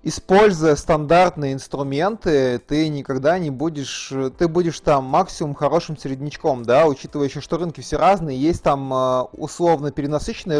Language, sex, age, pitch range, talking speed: Russian, male, 20-39, 135-170 Hz, 135 wpm